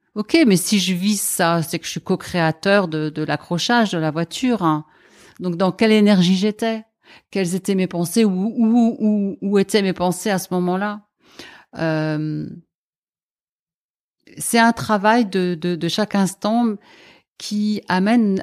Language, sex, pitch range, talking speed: French, female, 170-220 Hz, 145 wpm